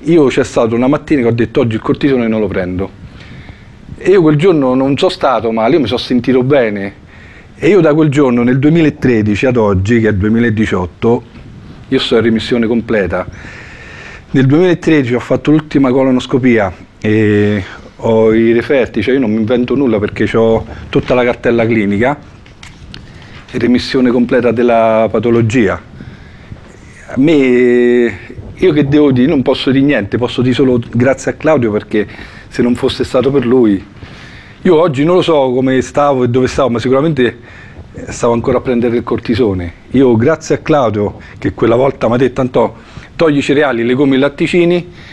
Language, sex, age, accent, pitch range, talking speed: Italian, male, 40-59, native, 110-135 Hz, 175 wpm